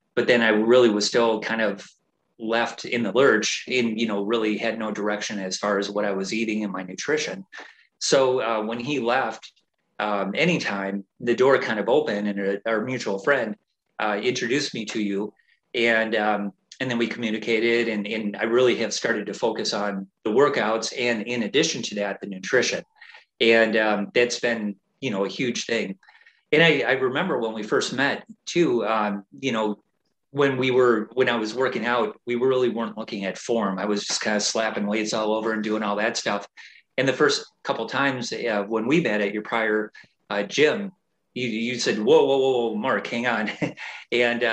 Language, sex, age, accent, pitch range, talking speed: English, male, 30-49, American, 105-120 Hz, 200 wpm